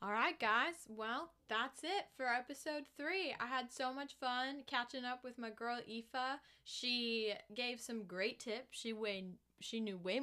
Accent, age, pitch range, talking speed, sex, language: American, 10-29, 175-240 Hz, 175 wpm, female, English